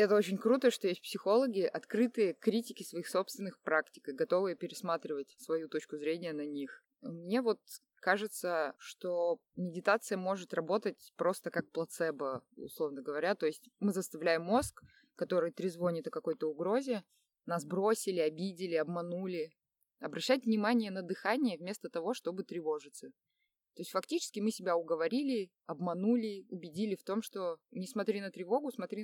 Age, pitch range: 20-39, 165-220 Hz